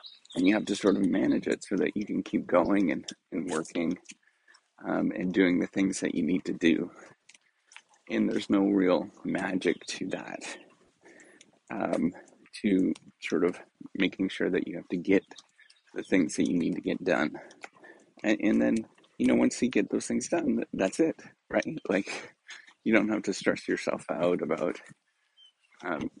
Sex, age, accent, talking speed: male, 30-49, American, 175 wpm